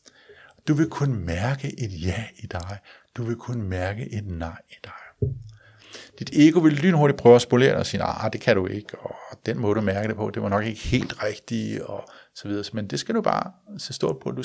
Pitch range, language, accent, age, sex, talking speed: 100-130 Hz, Danish, native, 60-79, male, 235 wpm